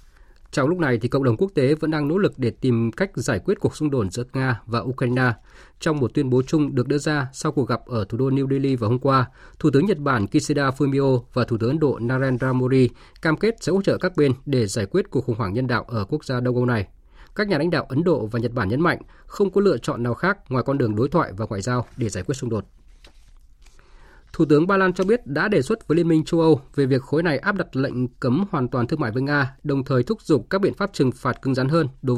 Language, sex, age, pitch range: Vietnamese, male, 20-39, 125-155 Hz